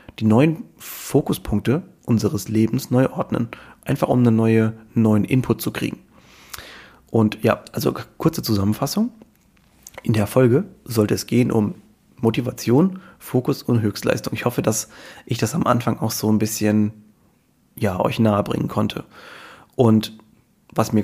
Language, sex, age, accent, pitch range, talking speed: German, male, 30-49, German, 110-130 Hz, 140 wpm